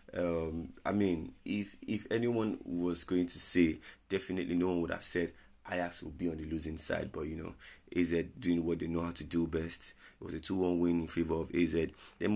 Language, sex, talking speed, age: English, male, 220 wpm, 30-49